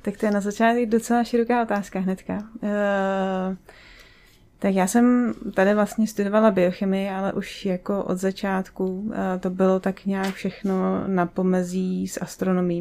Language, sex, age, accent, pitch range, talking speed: Czech, female, 30-49, native, 180-200 Hz, 150 wpm